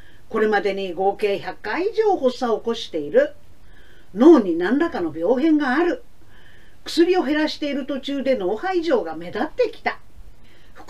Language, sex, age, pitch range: Japanese, female, 50-69, 210-345 Hz